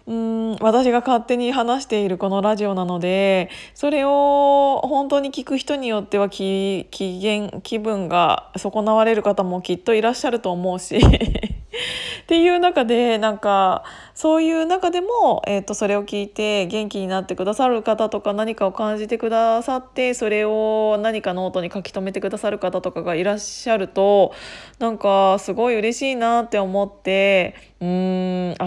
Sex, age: female, 20-39